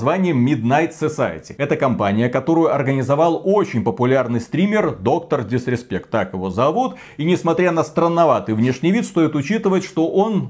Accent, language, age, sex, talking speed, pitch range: native, Russian, 30-49, male, 135 wpm, 125-175 Hz